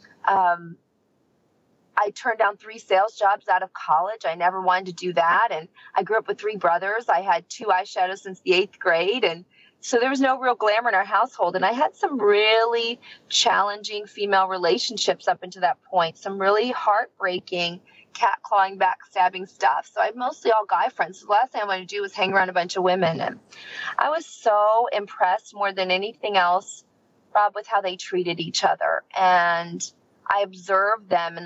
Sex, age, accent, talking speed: female, 30-49, American, 195 wpm